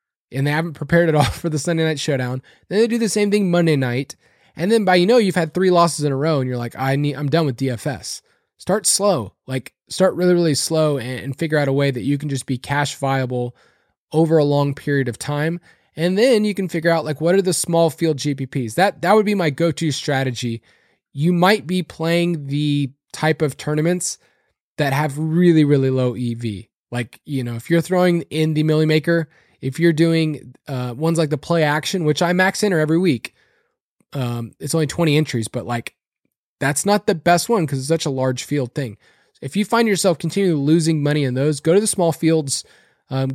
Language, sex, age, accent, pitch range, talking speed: English, male, 20-39, American, 135-175 Hz, 220 wpm